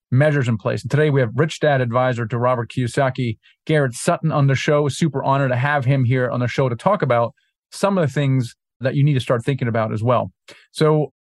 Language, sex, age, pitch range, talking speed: English, male, 30-49, 125-150 Hz, 235 wpm